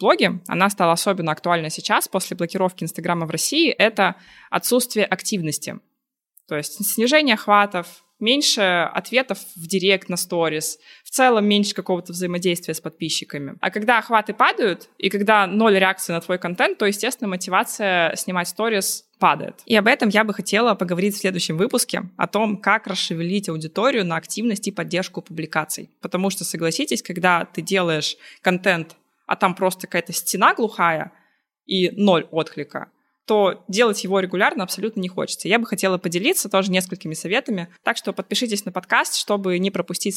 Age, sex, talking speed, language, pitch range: 20-39, female, 160 wpm, Russian, 175-215 Hz